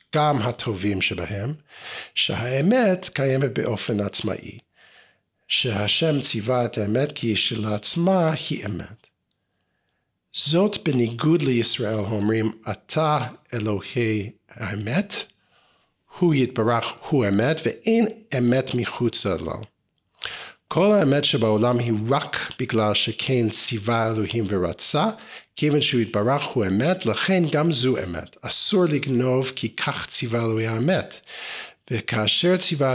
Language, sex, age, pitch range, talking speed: Hebrew, male, 50-69, 110-150 Hz, 105 wpm